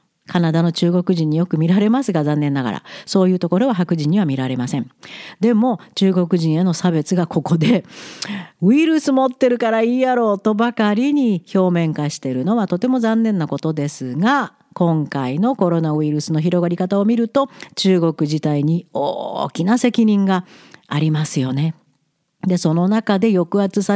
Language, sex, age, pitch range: Japanese, female, 50-69, 160-220 Hz